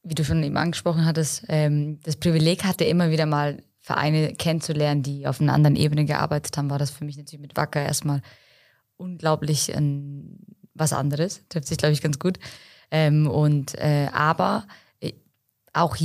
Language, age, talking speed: German, 20-39, 170 wpm